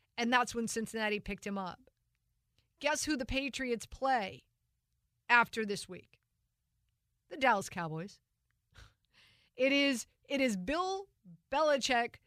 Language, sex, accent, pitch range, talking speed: English, female, American, 210-265 Hz, 115 wpm